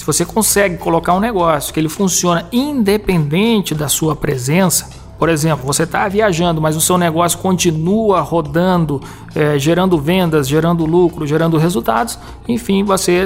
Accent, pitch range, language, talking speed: Brazilian, 155-180 Hz, Portuguese, 145 wpm